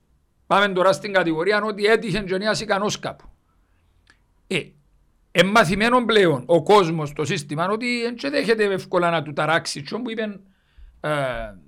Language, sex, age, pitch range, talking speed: Greek, male, 60-79, 165-215 Hz, 135 wpm